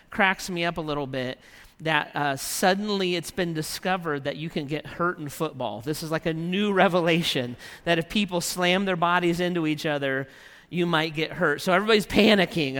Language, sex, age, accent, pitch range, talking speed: English, male, 40-59, American, 145-175 Hz, 190 wpm